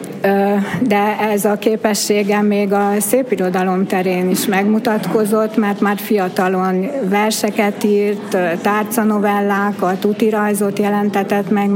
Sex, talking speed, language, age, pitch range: female, 95 wpm, Hungarian, 60-79, 195-215 Hz